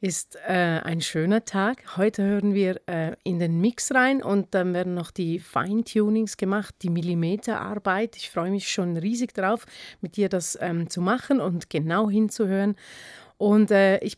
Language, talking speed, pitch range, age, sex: German, 175 wpm, 180-215 Hz, 30-49, female